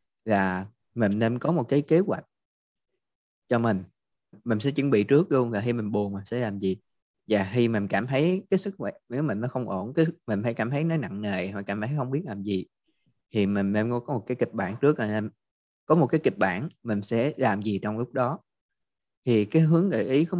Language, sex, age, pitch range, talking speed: Vietnamese, male, 20-39, 105-130 Hz, 240 wpm